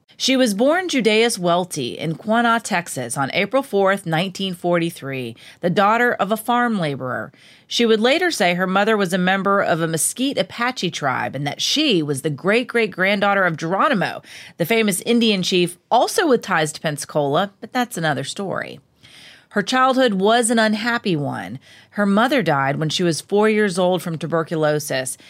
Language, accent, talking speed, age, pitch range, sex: English, American, 165 wpm, 30-49, 165-225 Hz, female